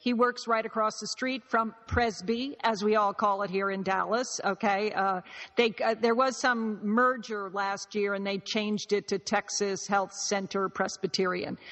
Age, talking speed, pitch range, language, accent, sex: 50-69, 180 wpm, 200-235 Hz, English, American, female